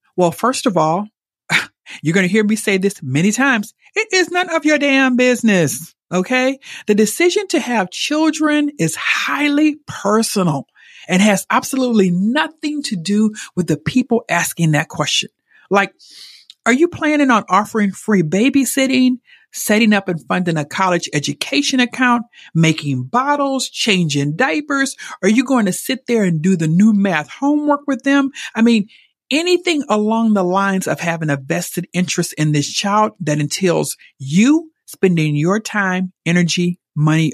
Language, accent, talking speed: English, American, 155 wpm